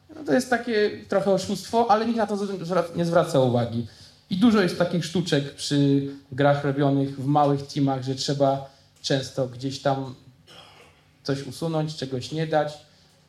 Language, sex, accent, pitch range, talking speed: Polish, male, native, 125-160 Hz, 155 wpm